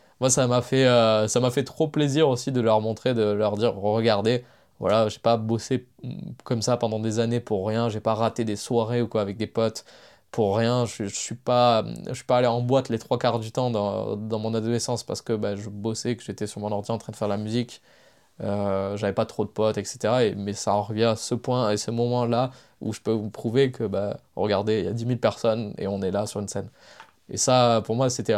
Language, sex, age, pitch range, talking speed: French, male, 20-39, 105-125 Hz, 260 wpm